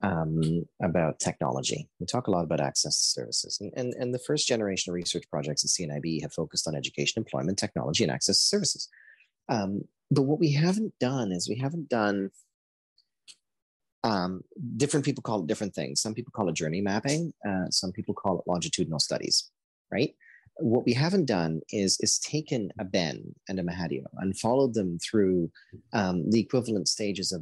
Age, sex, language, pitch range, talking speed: 30-49, male, English, 90-120 Hz, 185 wpm